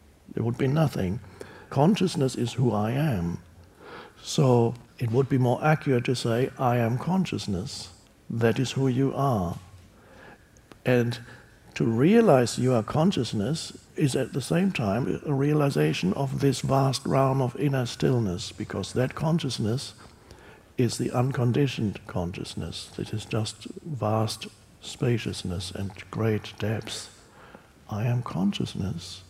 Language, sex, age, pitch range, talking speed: English, male, 60-79, 110-140 Hz, 130 wpm